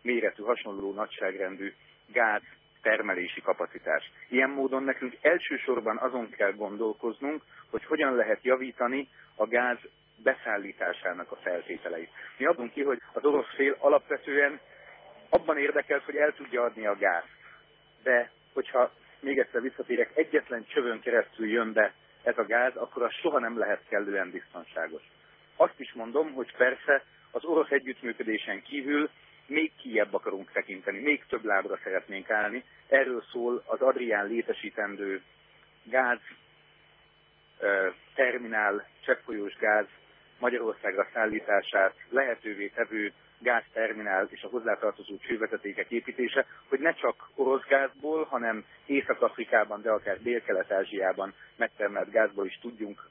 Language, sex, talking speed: Hungarian, male, 125 wpm